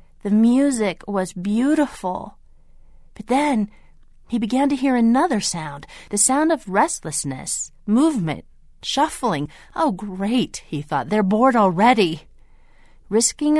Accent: American